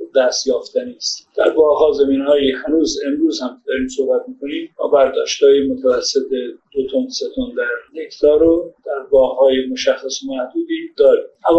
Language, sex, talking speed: Persian, male, 140 wpm